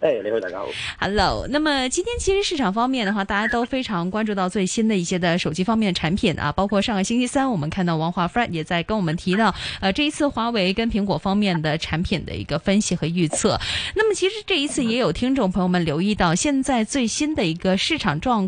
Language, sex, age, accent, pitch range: Chinese, female, 20-39, native, 180-255 Hz